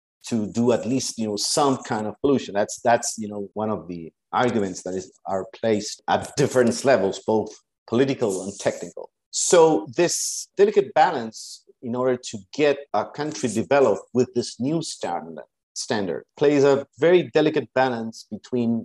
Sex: male